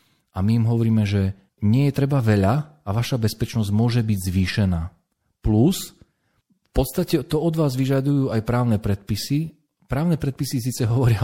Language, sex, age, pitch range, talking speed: Slovak, male, 40-59, 95-125 Hz, 155 wpm